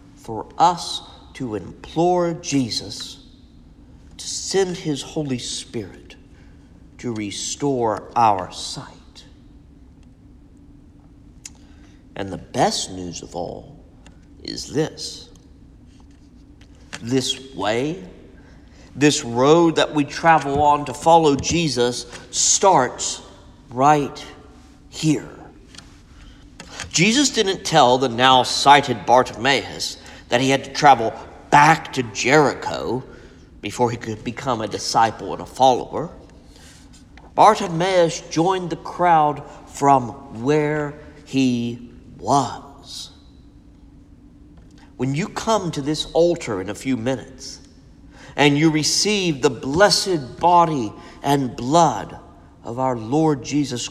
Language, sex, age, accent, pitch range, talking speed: English, male, 50-69, American, 120-160 Hz, 100 wpm